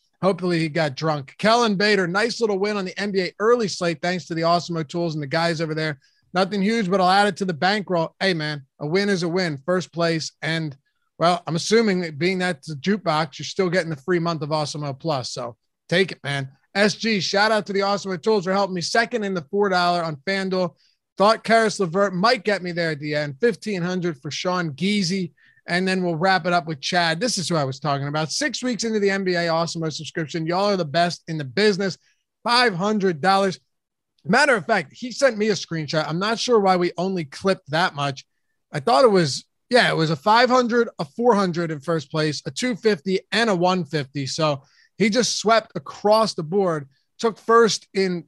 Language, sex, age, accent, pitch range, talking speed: English, male, 30-49, American, 160-205 Hz, 210 wpm